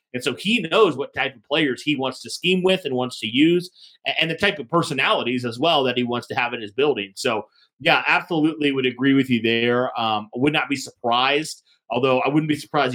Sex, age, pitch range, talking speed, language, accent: male, 30-49, 125-155 Hz, 230 wpm, English, American